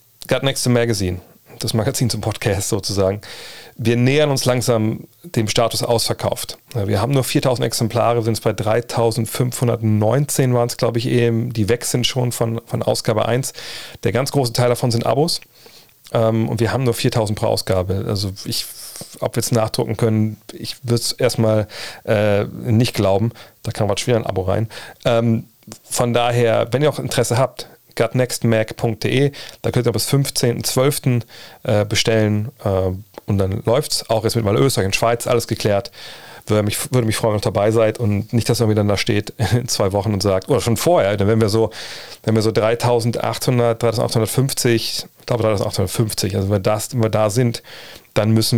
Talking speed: 180 wpm